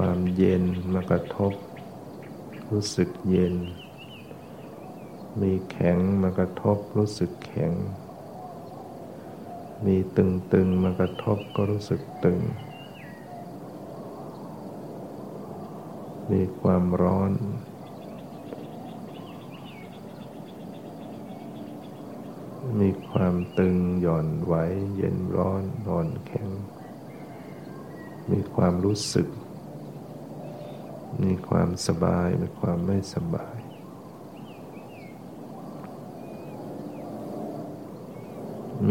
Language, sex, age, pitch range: Thai, male, 60-79, 90-100 Hz